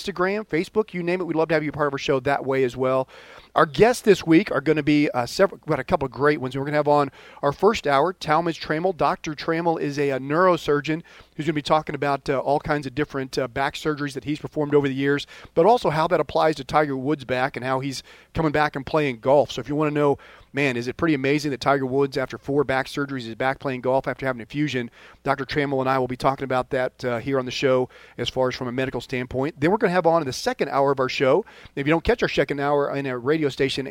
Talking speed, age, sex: 280 wpm, 40-59, male